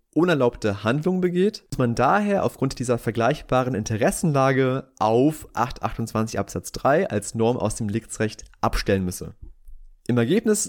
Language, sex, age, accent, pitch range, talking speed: German, male, 30-49, German, 115-160 Hz, 130 wpm